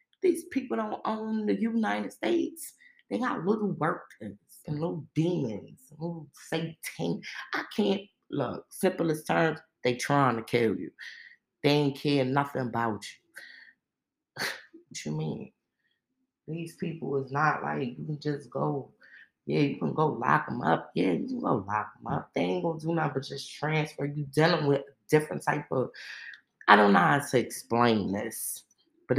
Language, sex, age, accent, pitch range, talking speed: English, female, 20-39, American, 130-170 Hz, 170 wpm